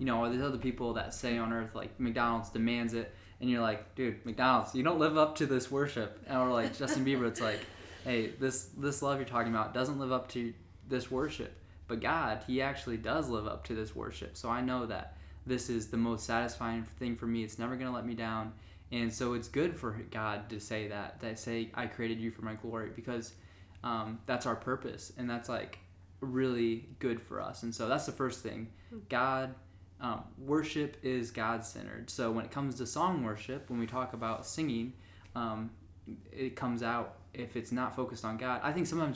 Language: English